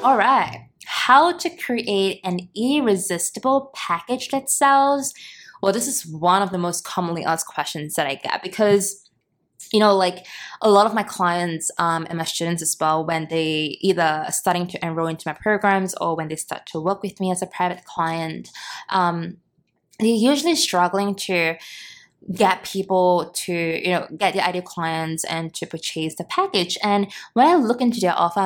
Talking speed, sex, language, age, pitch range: 180 wpm, female, English, 20-39, 170-220 Hz